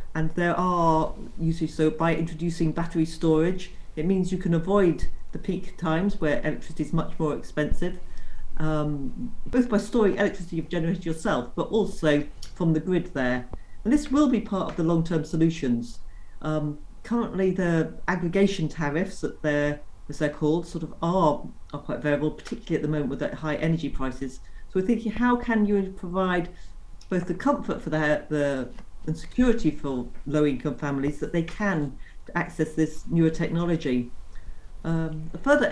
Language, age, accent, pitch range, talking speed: English, 40-59, British, 150-190 Hz, 165 wpm